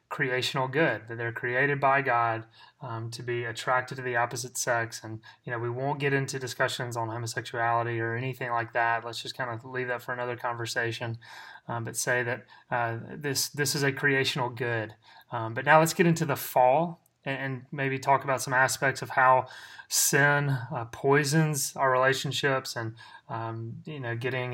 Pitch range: 120-135 Hz